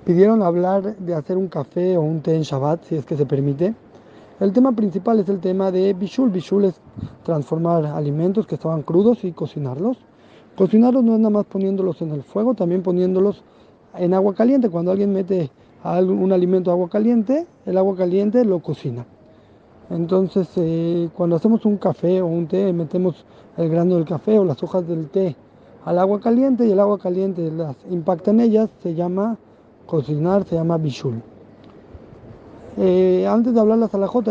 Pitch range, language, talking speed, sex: 165-200 Hz, Spanish, 180 wpm, male